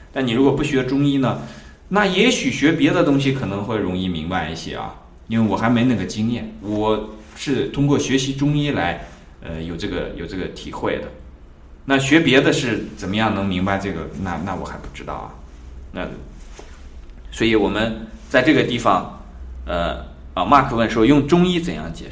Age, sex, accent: 20-39, male, native